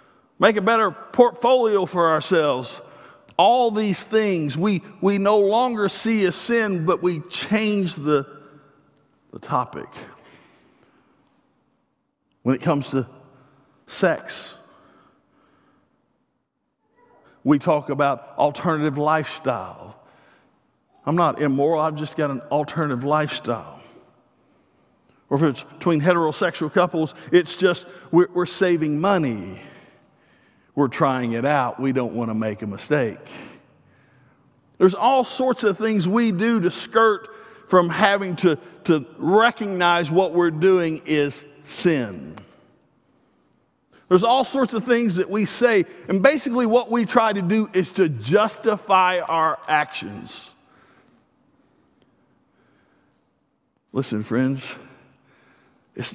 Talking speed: 115 wpm